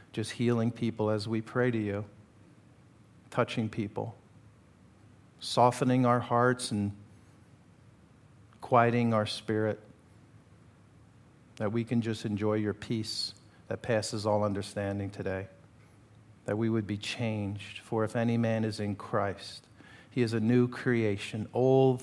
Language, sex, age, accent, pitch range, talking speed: English, male, 50-69, American, 105-125 Hz, 130 wpm